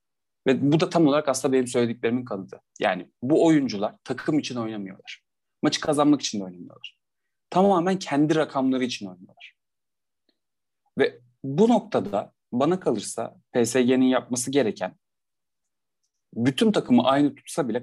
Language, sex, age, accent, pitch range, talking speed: Turkish, male, 30-49, native, 100-130 Hz, 130 wpm